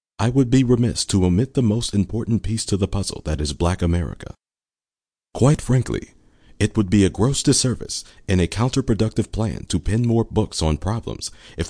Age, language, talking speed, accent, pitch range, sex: 40-59, English, 185 wpm, American, 90-115 Hz, male